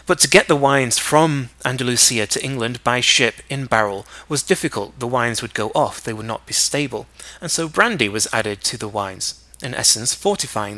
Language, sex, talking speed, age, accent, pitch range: English, male, 200 wpm, 30-49, British, 110-140 Hz